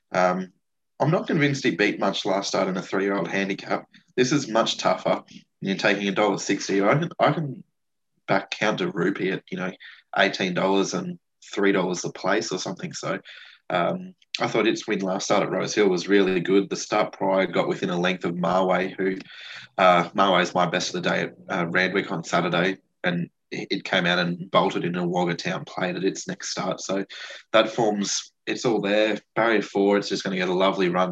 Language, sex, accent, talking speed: English, male, Australian, 205 wpm